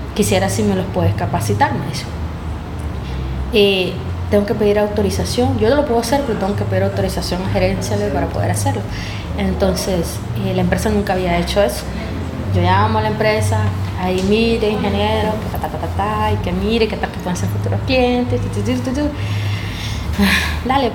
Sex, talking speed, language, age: female, 180 wpm, Spanish, 20-39